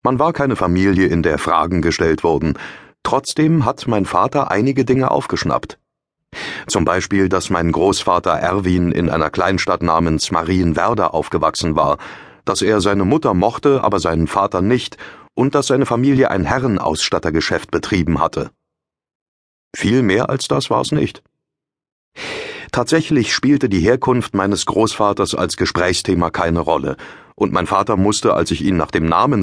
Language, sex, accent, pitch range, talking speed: German, male, German, 90-120 Hz, 150 wpm